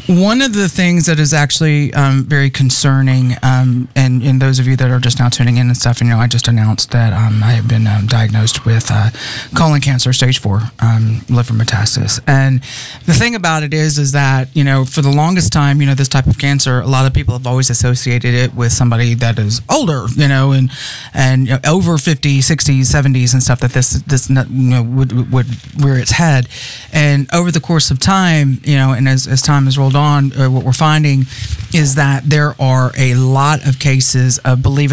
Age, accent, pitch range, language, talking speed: 30-49, American, 125-145 Hz, English, 225 wpm